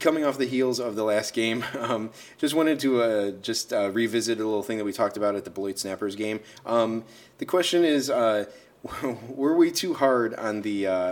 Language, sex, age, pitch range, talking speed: English, male, 30-49, 90-115 Hz, 215 wpm